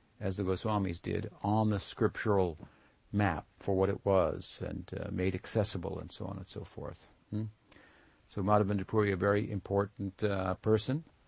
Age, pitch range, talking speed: 50-69, 95-105 Hz, 165 wpm